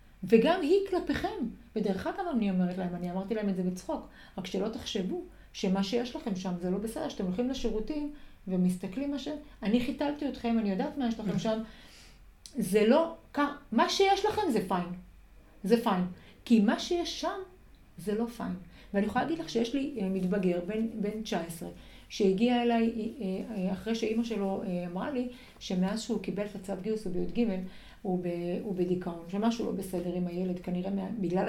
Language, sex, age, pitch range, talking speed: Hebrew, female, 40-59, 195-275 Hz, 175 wpm